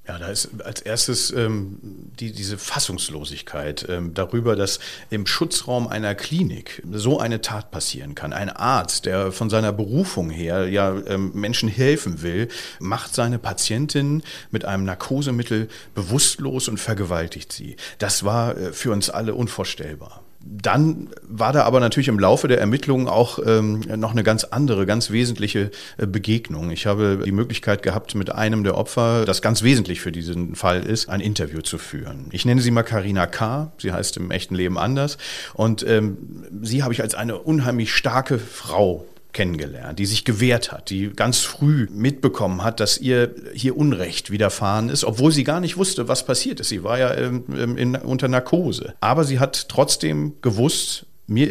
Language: German